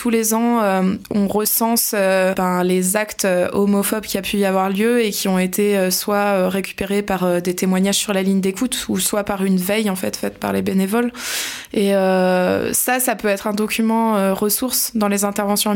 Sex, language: female, French